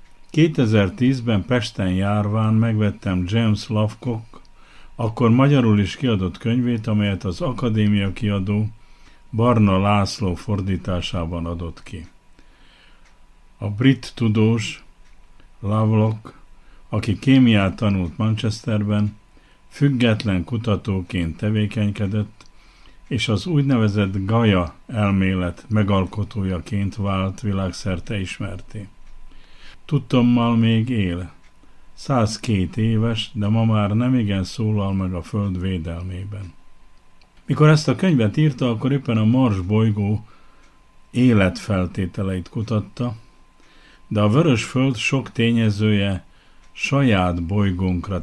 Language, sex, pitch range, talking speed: Hungarian, male, 95-115 Hz, 90 wpm